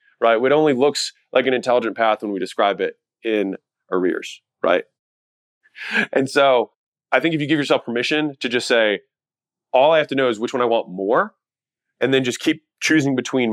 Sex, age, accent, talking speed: male, 20-39, American, 195 wpm